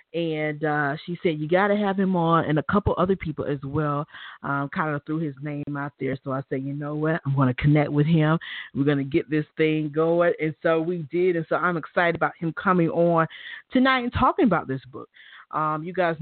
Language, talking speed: English, 240 wpm